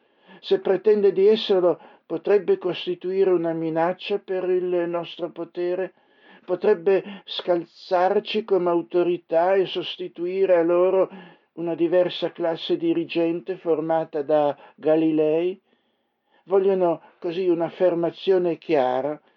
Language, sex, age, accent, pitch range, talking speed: Italian, male, 60-79, native, 150-185 Hz, 95 wpm